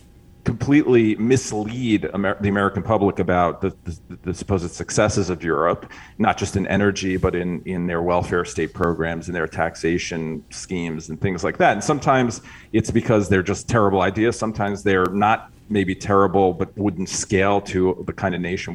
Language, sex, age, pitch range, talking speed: English, male, 40-59, 90-105 Hz, 170 wpm